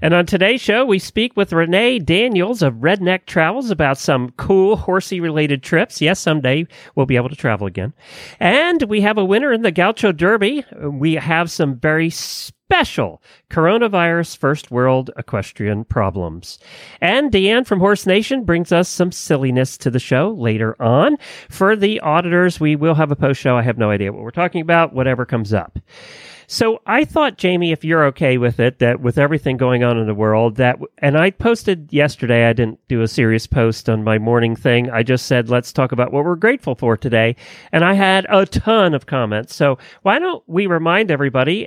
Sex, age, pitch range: male, 40-59, 125-185 Hz